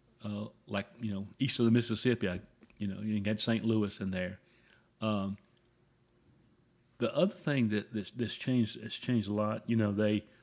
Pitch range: 105-130 Hz